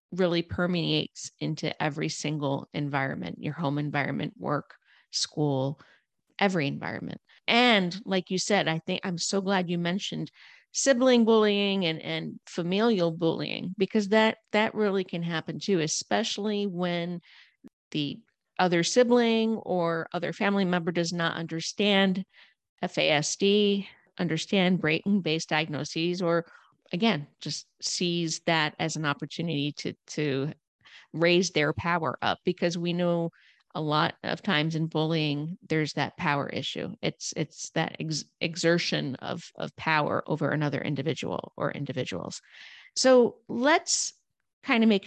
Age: 40-59